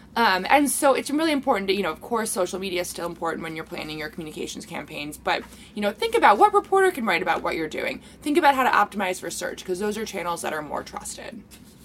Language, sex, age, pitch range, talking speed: English, female, 20-39, 185-255 Hz, 255 wpm